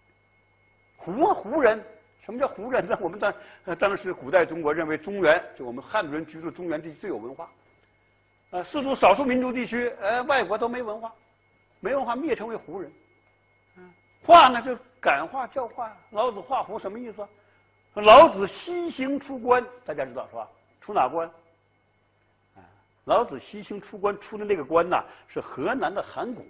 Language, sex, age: Chinese, male, 60-79